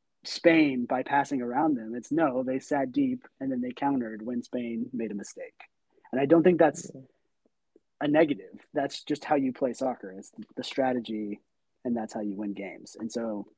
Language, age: English, 30-49